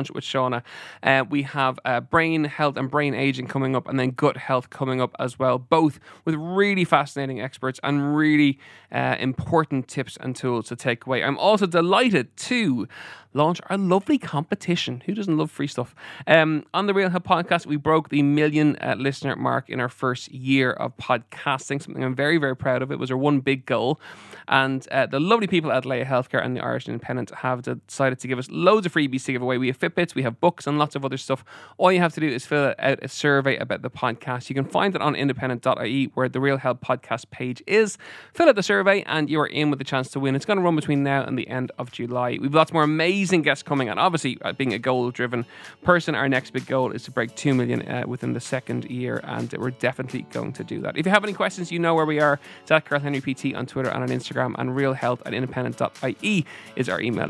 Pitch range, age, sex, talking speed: 130-160 Hz, 20-39, male, 230 wpm